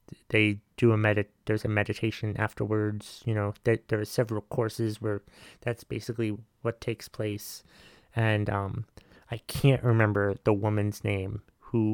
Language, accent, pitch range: English, American, 105-115 Hz